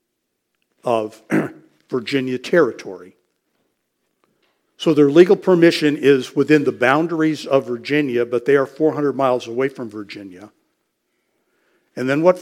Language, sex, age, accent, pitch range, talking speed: English, male, 50-69, American, 125-155 Hz, 115 wpm